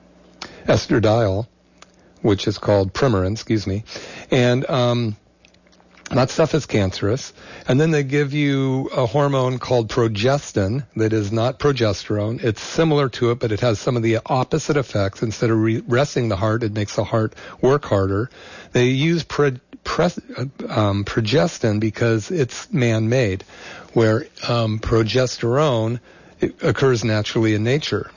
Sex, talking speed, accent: male, 140 wpm, American